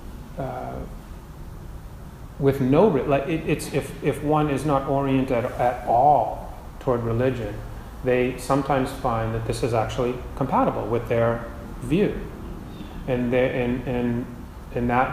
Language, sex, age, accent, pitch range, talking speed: English, male, 30-49, American, 110-135 Hz, 140 wpm